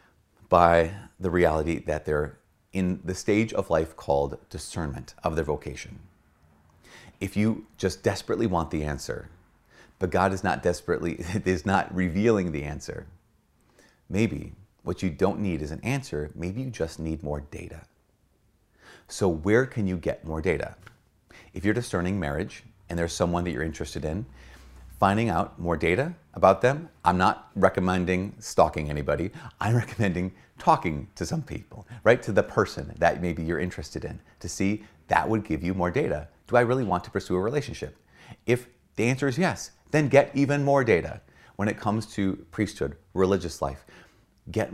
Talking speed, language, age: 165 wpm, English, 30-49